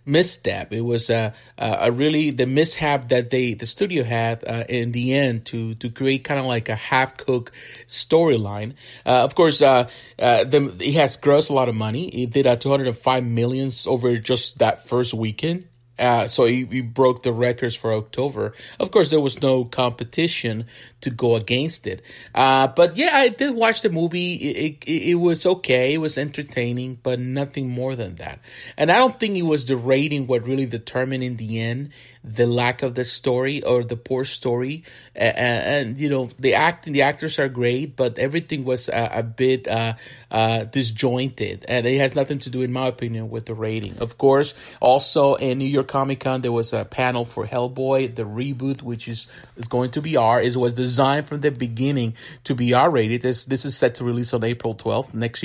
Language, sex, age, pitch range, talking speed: English, male, 30-49, 120-140 Hz, 210 wpm